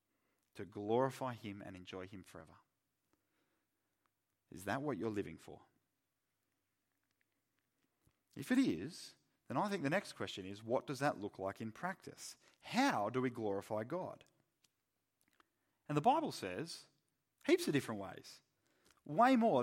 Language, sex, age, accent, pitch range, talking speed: English, male, 40-59, Australian, 115-155 Hz, 140 wpm